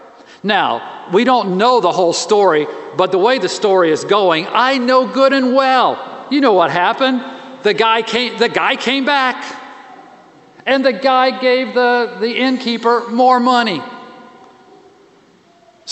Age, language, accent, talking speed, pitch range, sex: 50-69, English, American, 150 wpm, 185-270 Hz, male